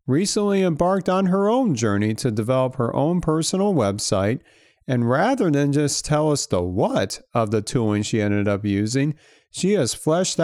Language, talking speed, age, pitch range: English, 170 wpm, 40-59, 110-170 Hz